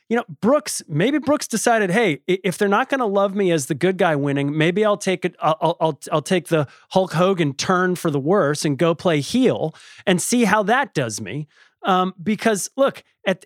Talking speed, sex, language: 215 wpm, male, English